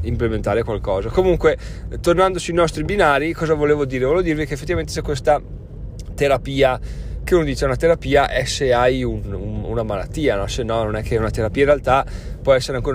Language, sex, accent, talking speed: Italian, male, native, 200 wpm